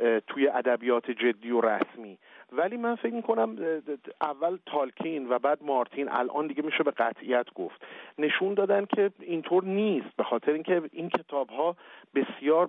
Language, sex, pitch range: Persian, male, 125-170 Hz